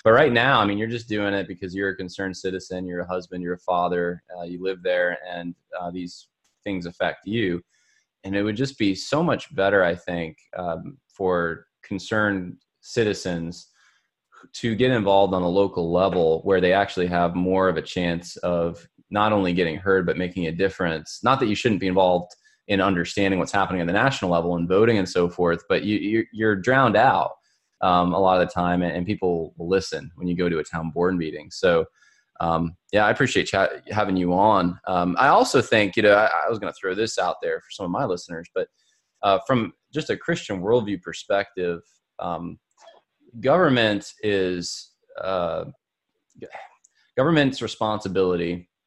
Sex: male